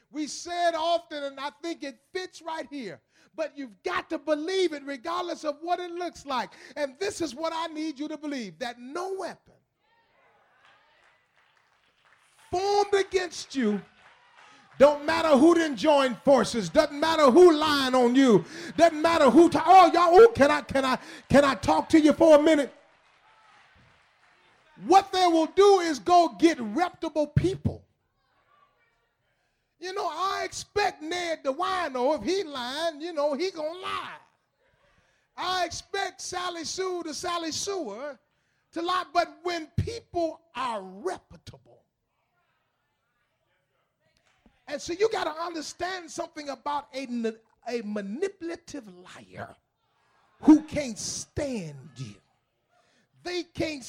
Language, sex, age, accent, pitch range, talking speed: English, male, 40-59, American, 275-350 Hz, 140 wpm